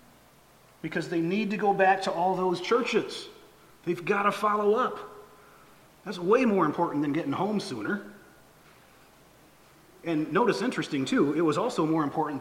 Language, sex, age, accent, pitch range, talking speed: English, male, 30-49, American, 140-185 Hz, 155 wpm